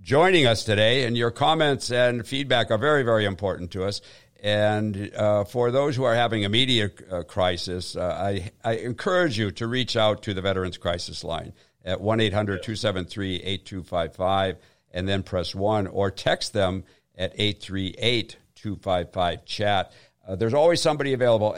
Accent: American